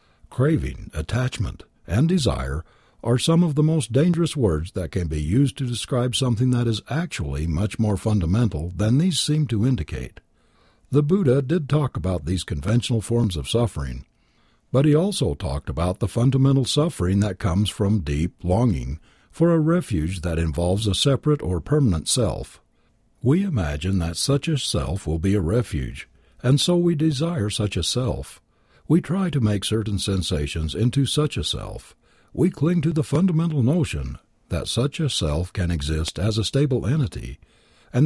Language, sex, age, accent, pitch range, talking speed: English, male, 60-79, American, 90-145 Hz, 165 wpm